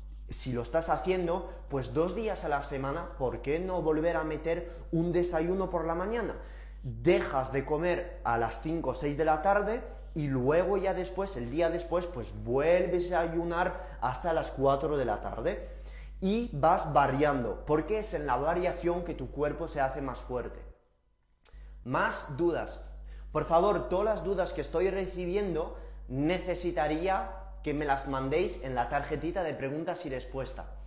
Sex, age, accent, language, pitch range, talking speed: male, 20-39, Spanish, Spanish, 135-185 Hz, 165 wpm